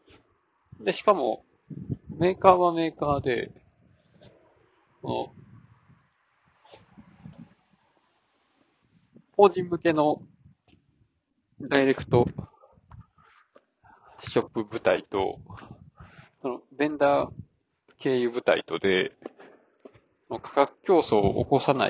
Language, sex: Japanese, male